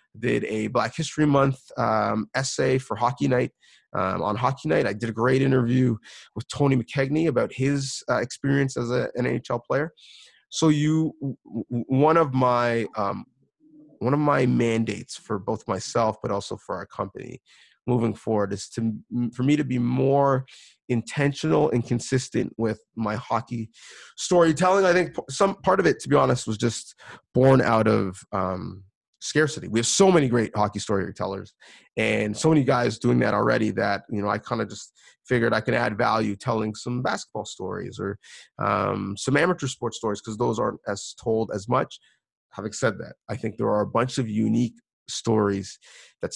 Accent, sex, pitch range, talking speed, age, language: American, male, 110-135 Hz, 175 wpm, 30-49, English